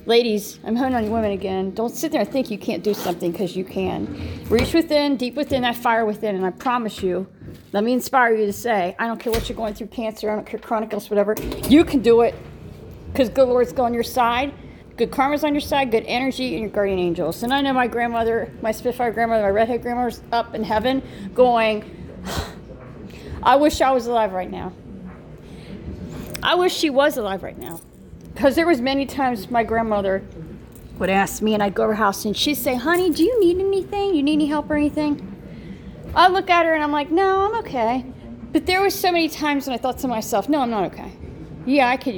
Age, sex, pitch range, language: 40-59, female, 210-275 Hz, English